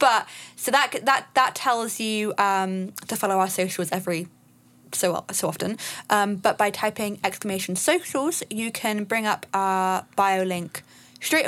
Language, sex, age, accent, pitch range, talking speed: English, female, 20-39, British, 185-255 Hz, 155 wpm